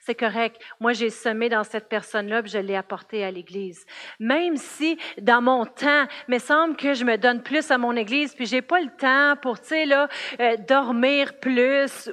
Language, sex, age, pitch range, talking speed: French, female, 40-59, 220-270 Hz, 210 wpm